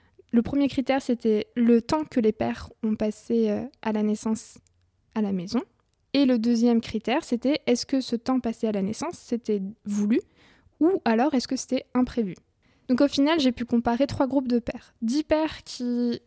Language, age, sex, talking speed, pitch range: French, 20-39, female, 190 wpm, 225-270 Hz